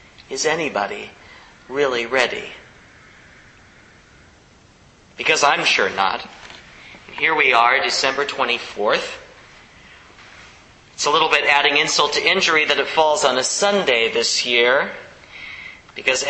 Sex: male